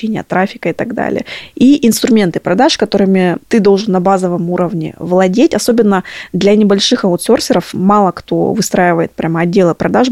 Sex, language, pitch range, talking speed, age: female, Russian, 185-225 Hz, 140 wpm, 20-39